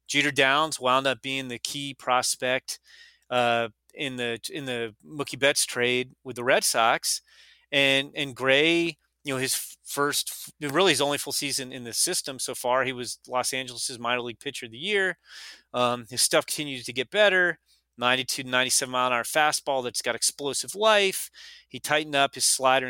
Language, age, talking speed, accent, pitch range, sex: English, 30-49, 185 wpm, American, 125-160 Hz, male